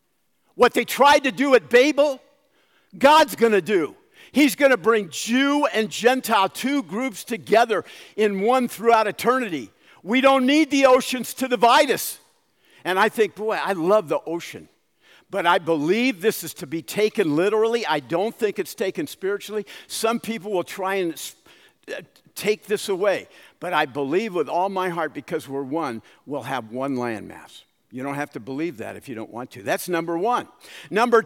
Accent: American